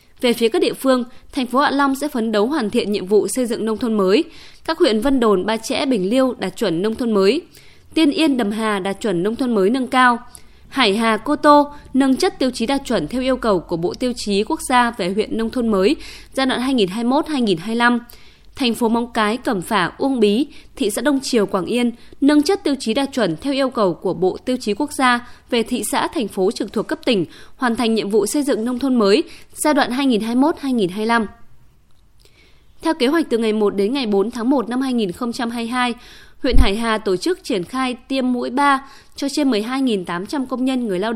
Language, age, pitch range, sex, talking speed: Vietnamese, 20-39, 215-275 Hz, female, 220 wpm